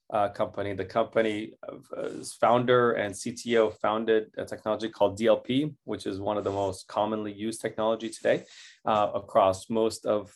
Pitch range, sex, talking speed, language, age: 100-120 Hz, male, 155 wpm, English, 20-39